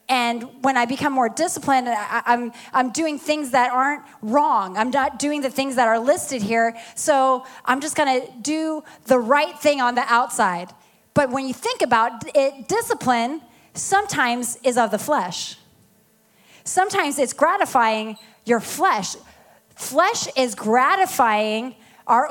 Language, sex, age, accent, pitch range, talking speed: English, female, 30-49, American, 225-280 Hz, 145 wpm